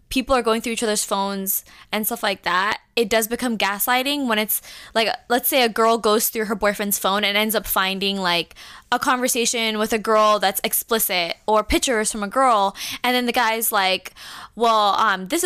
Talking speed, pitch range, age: 200 wpm, 205-250 Hz, 10-29